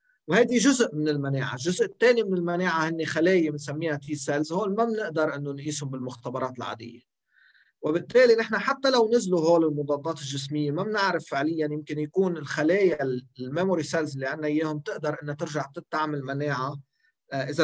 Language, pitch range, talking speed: Arabic, 140-190 Hz, 155 wpm